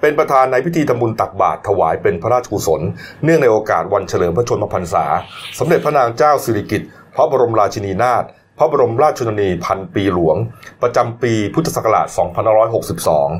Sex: male